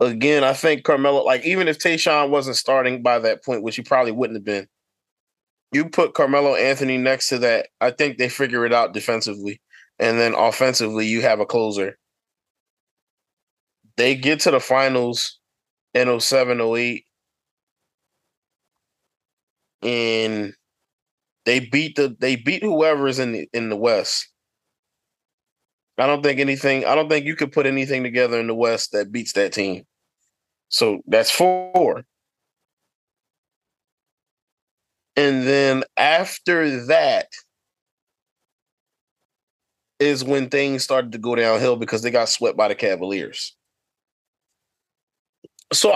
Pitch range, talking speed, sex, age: 115-145 Hz, 130 wpm, male, 20-39